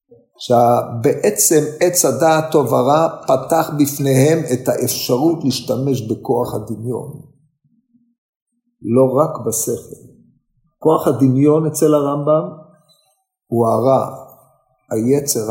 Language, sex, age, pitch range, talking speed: Hebrew, male, 50-69, 130-175 Hz, 85 wpm